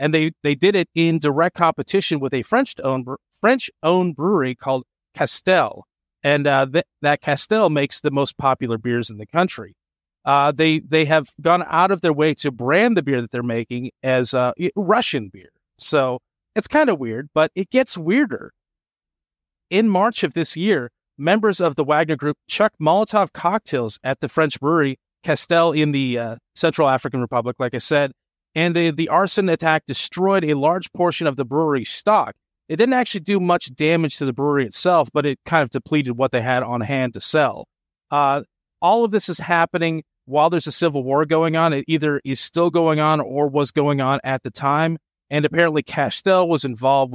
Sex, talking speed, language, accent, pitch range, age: male, 190 wpm, English, American, 135-170 Hz, 30-49